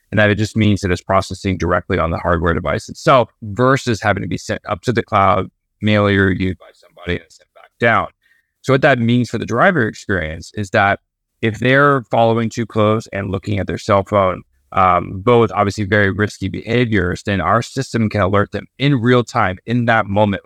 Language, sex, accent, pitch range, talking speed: English, male, American, 95-115 Hz, 210 wpm